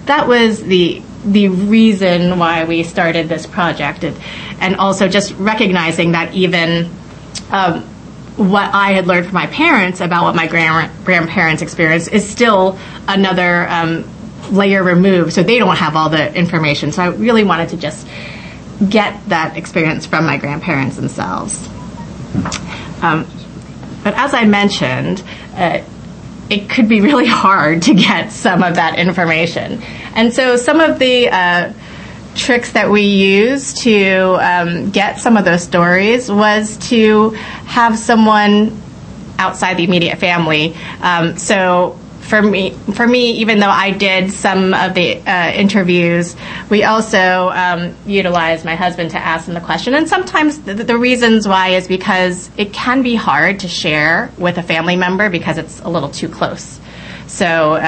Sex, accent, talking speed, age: female, American, 155 wpm, 30-49